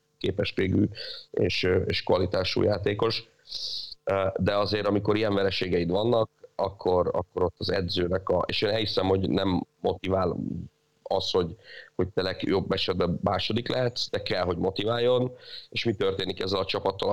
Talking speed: 145 wpm